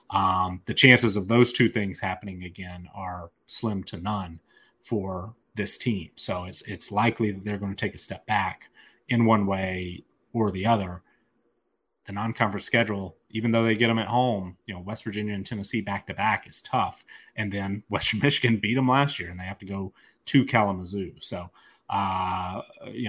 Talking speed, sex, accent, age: 190 wpm, male, American, 30-49